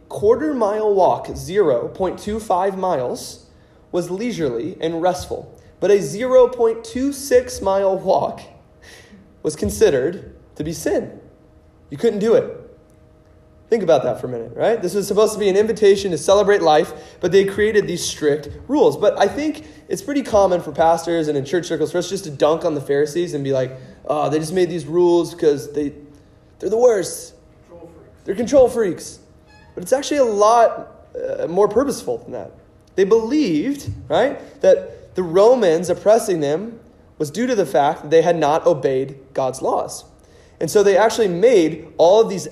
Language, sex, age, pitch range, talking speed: English, male, 20-39, 165-250 Hz, 170 wpm